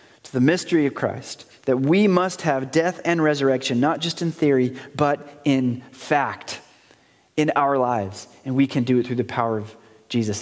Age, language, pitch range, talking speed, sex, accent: 30-49, English, 125-170 Hz, 180 wpm, male, American